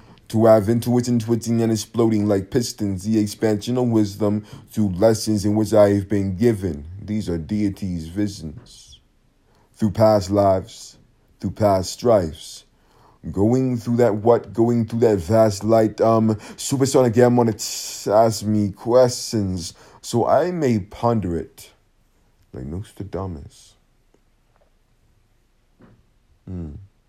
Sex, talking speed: male, 120 wpm